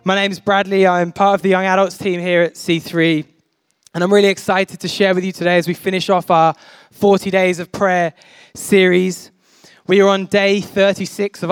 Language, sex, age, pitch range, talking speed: English, male, 10-29, 175-195 Hz, 205 wpm